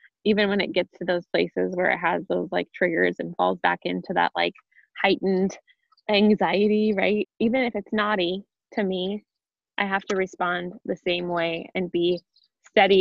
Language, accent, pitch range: English, American, 180-200 Hz